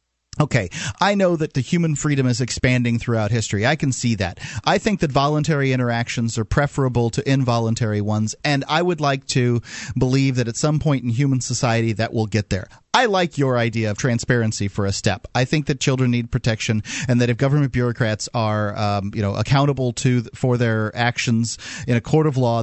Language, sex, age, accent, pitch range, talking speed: English, male, 40-59, American, 120-150 Hz, 200 wpm